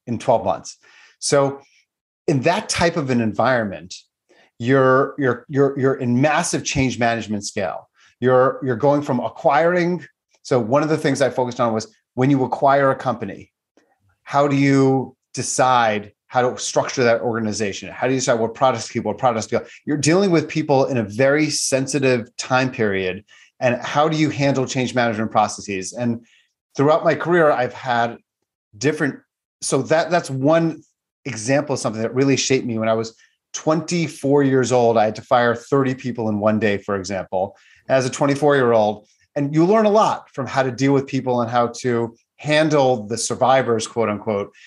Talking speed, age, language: 185 wpm, 30-49, English